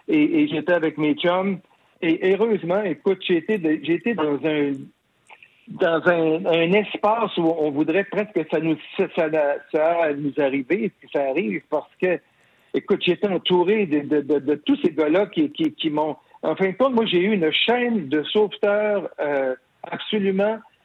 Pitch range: 160-220 Hz